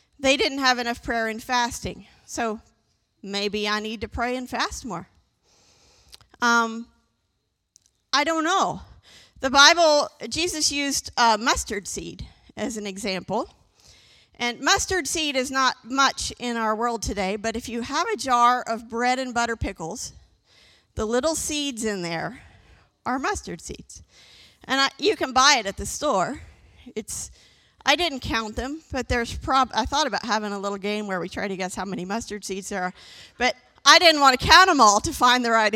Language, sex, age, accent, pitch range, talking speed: English, female, 40-59, American, 205-280 Hz, 175 wpm